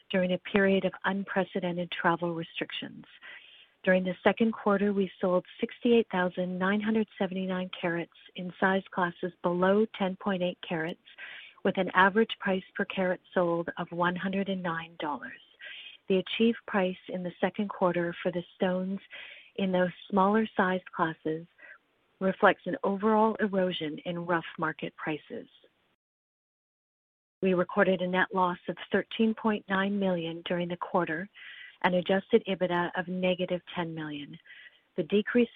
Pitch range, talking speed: 175-200 Hz, 125 wpm